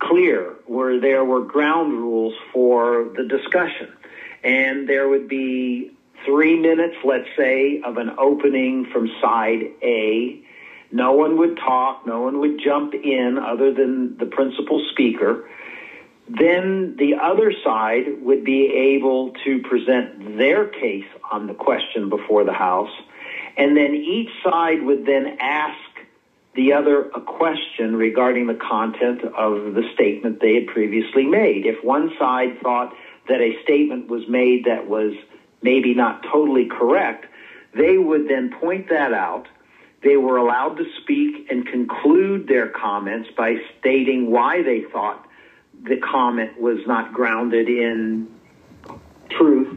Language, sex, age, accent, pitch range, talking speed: English, male, 50-69, American, 120-150 Hz, 140 wpm